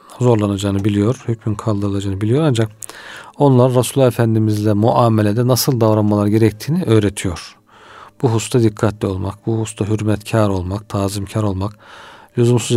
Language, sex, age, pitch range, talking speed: Turkish, male, 40-59, 105-125 Hz, 120 wpm